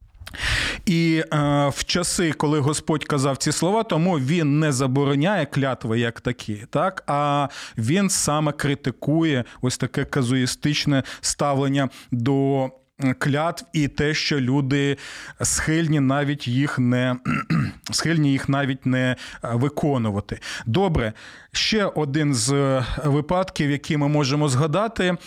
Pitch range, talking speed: 135-170 Hz, 110 wpm